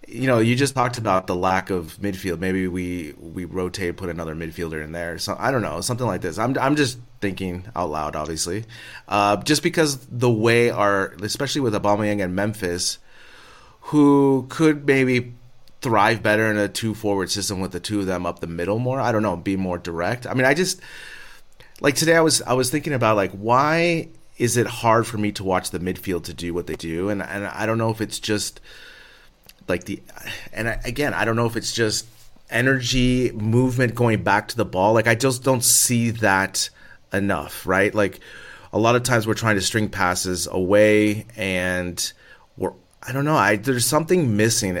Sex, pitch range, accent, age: male, 95-120 Hz, American, 30-49